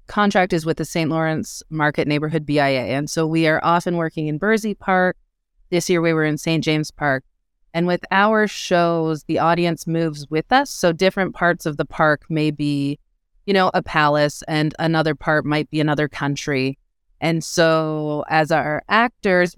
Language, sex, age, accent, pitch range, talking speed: English, female, 30-49, American, 150-180 Hz, 180 wpm